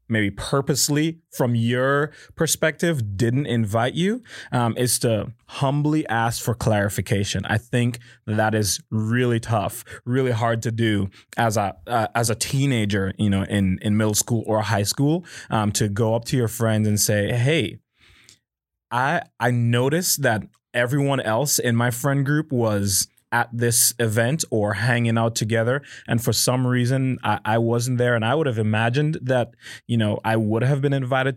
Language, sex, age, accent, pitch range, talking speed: English, male, 20-39, American, 110-130 Hz, 170 wpm